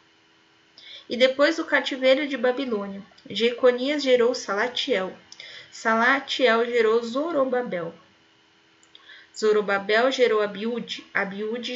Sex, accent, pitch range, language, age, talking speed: female, Brazilian, 200-250 Hz, Portuguese, 10-29, 80 wpm